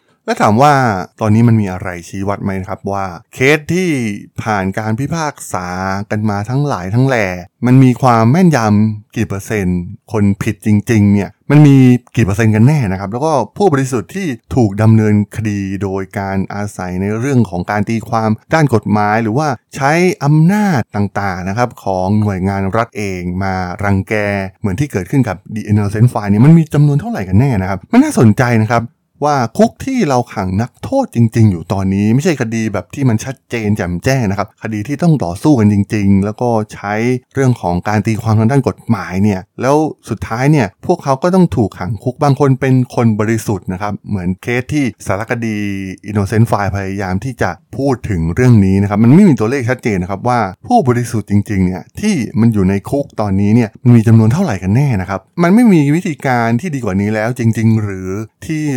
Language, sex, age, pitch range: Thai, male, 20-39, 100-130 Hz